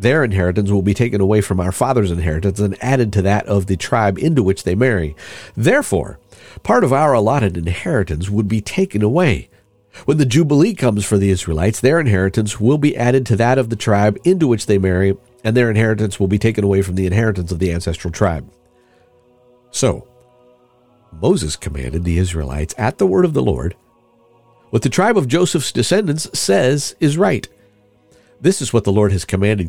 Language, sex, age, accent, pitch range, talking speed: English, male, 50-69, American, 95-125 Hz, 190 wpm